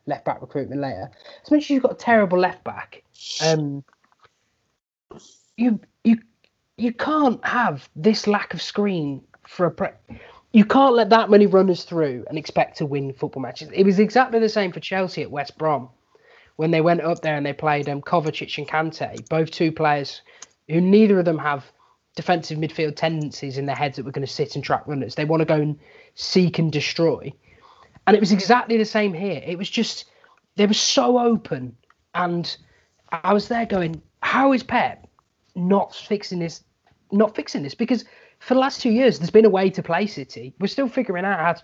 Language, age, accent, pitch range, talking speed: English, 20-39, British, 150-215 Hz, 195 wpm